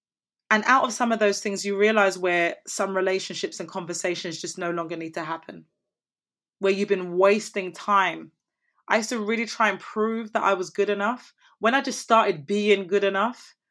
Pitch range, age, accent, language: 185-230 Hz, 30-49, British, English